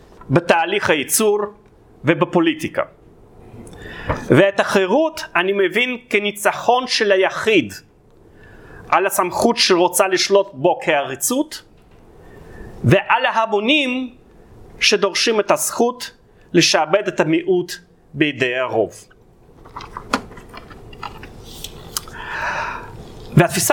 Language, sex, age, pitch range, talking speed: Hebrew, male, 30-49, 175-245 Hz, 70 wpm